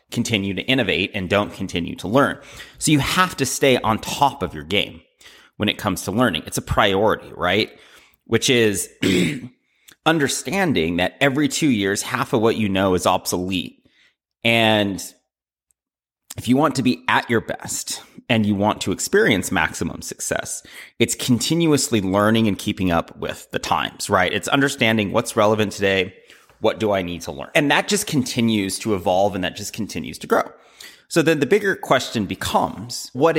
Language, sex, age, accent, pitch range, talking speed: English, male, 30-49, American, 100-135 Hz, 175 wpm